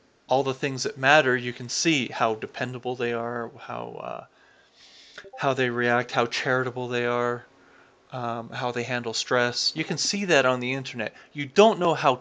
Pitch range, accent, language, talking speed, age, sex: 120-150 Hz, American, English, 180 wpm, 30-49, male